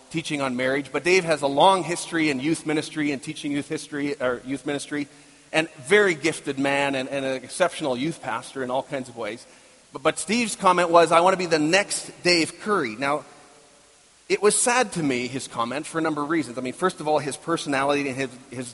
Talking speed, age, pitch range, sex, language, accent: 225 wpm, 30-49, 140-175 Hz, male, English, American